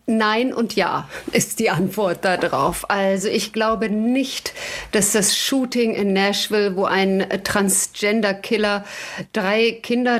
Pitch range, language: 195-230 Hz, German